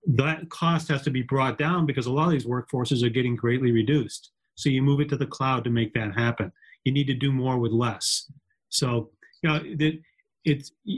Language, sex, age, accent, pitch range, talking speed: English, male, 40-59, American, 120-155 Hz, 215 wpm